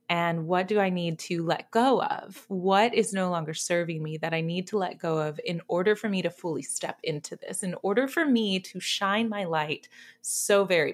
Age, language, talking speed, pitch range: 20-39, English, 225 wpm, 165-200 Hz